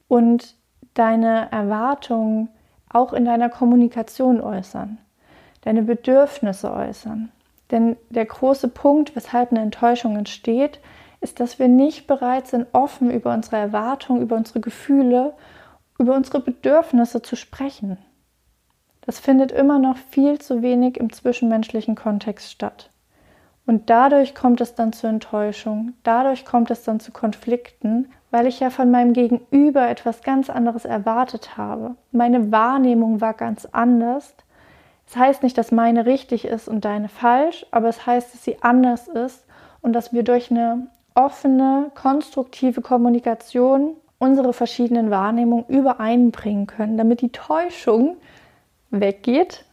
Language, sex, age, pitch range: German, female, 30-49, 230-260 Hz